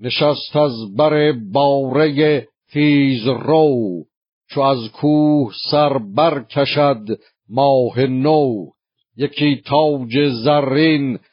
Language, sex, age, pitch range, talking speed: Persian, male, 50-69, 130-150 Hz, 90 wpm